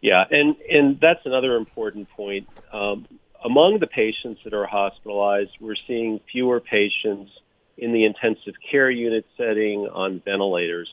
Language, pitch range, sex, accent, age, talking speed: English, 100-115 Hz, male, American, 40-59, 145 wpm